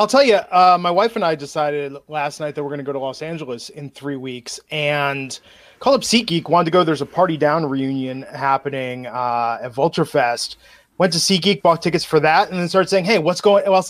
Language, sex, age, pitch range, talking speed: English, male, 20-39, 155-205 Hz, 240 wpm